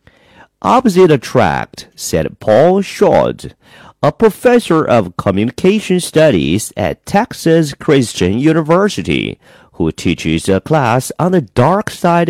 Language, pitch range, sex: Chinese, 125-190 Hz, male